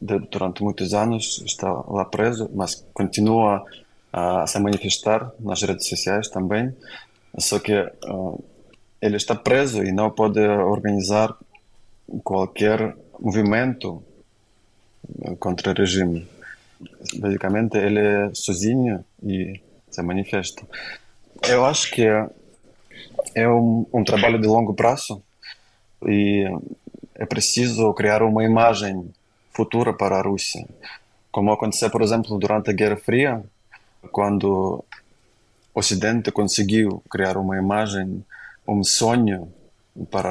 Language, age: Portuguese, 20-39